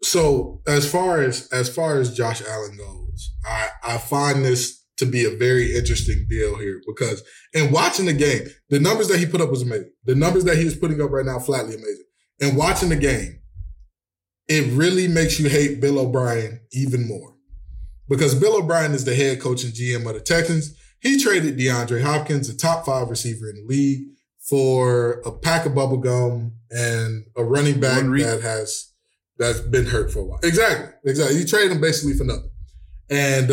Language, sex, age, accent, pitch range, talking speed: English, male, 20-39, American, 120-160 Hz, 195 wpm